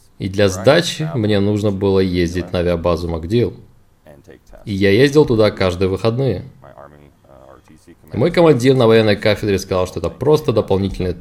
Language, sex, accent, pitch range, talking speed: Russian, male, native, 90-120 Hz, 140 wpm